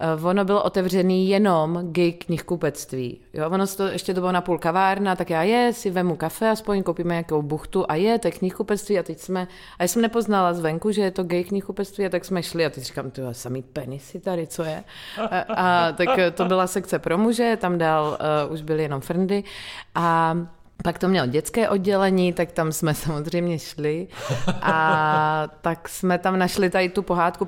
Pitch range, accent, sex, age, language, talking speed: 145-185 Hz, native, female, 30-49, Czech, 190 wpm